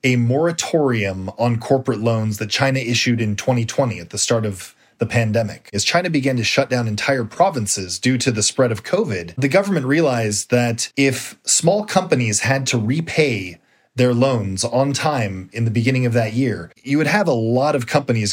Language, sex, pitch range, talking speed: English, male, 110-140 Hz, 185 wpm